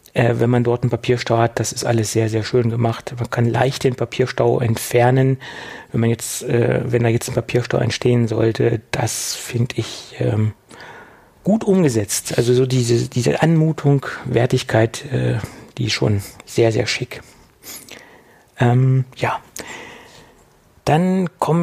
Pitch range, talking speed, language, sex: 120-155 Hz, 150 wpm, German, male